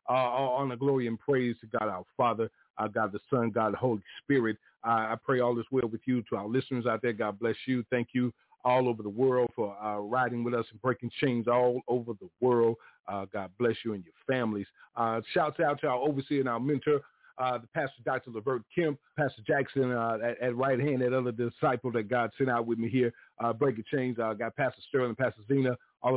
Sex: male